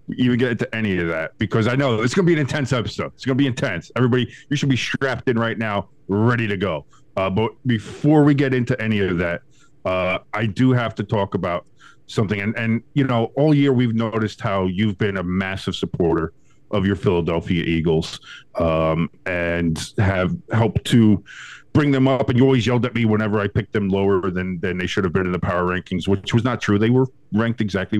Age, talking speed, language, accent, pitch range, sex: 40-59, 220 wpm, English, American, 105-140 Hz, male